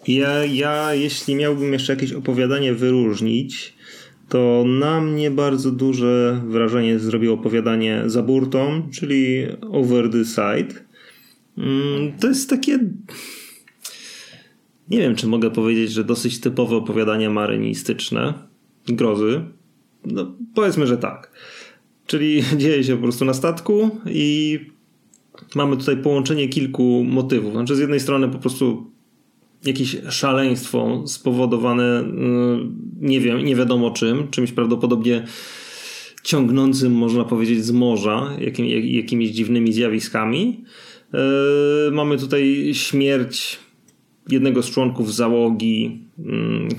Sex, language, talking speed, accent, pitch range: male, Polish, 110 wpm, native, 120-145 Hz